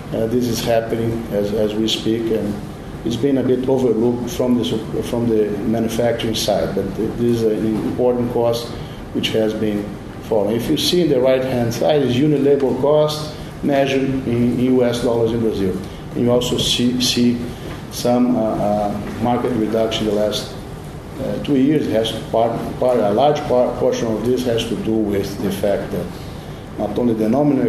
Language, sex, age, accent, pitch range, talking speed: English, male, 50-69, Brazilian, 110-130 Hz, 185 wpm